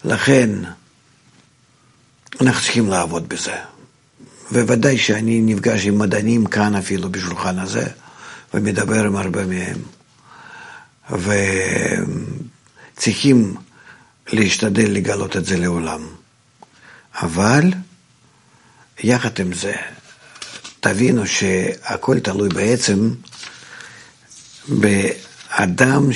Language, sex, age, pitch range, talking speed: Hebrew, male, 50-69, 100-130 Hz, 75 wpm